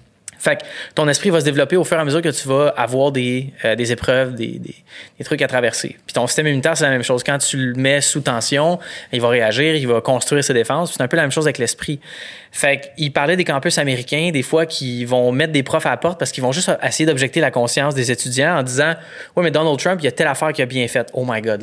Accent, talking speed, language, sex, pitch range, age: Canadian, 285 wpm, French, male, 130-165 Hz, 20-39